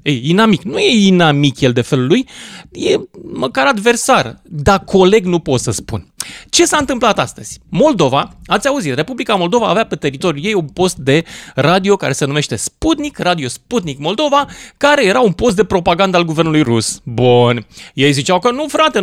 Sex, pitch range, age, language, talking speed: male, 160-245 Hz, 30-49, Romanian, 180 wpm